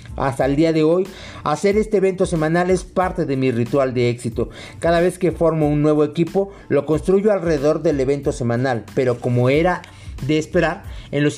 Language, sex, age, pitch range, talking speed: Spanish, male, 50-69, 130-175 Hz, 190 wpm